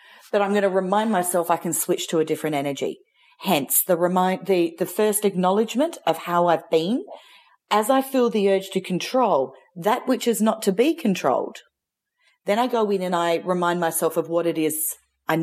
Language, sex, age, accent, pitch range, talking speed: English, female, 40-59, Australian, 160-195 Hz, 200 wpm